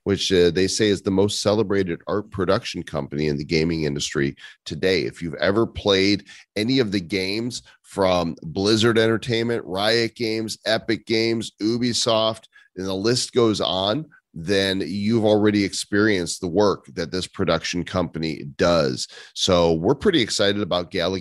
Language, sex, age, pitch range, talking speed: English, male, 30-49, 80-105 Hz, 155 wpm